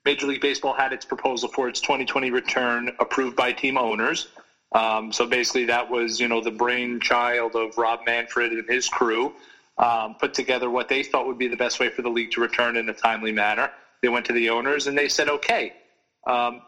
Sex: male